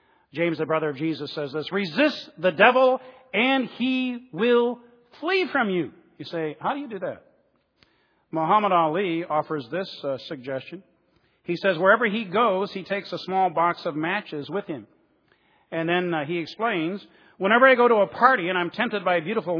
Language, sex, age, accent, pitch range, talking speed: English, male, 50-69, American, 155-210 Hz, 185 wpm